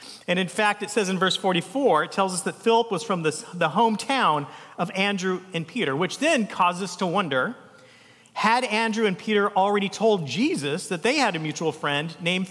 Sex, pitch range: male, 160-225 Hz